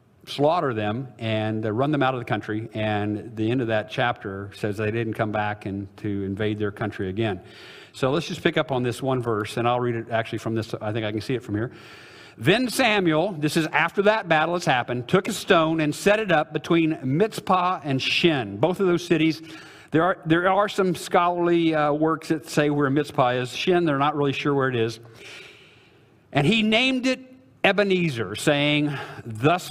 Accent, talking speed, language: American, 205 wpm, English